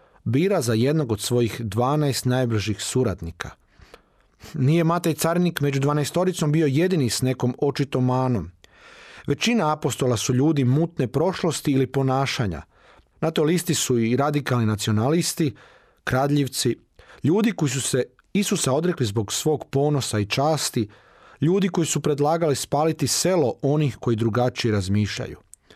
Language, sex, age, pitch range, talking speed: Croatian, male, 40-59, 115-155 Hz, 130 wpm